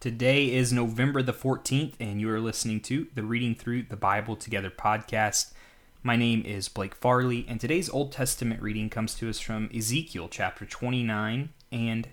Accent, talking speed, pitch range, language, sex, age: American, 175 wpm, 105-120 Hz, English, male, 20-39